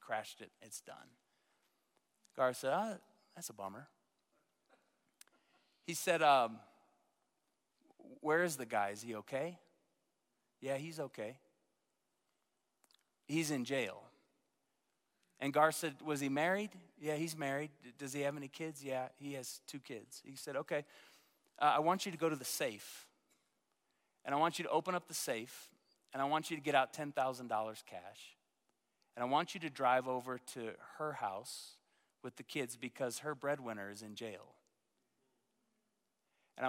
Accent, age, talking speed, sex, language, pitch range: American, 30-49, 155 wpm, male, English, 120-155 Hz